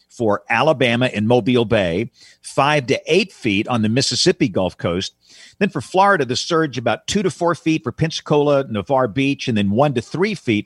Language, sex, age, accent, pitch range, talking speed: English, male, 50-69, American, 105-140 Hz, 190 wpm